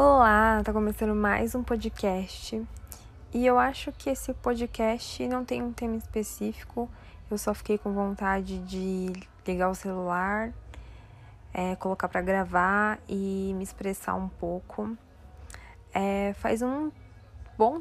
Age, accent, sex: 10-29, Brazilian, female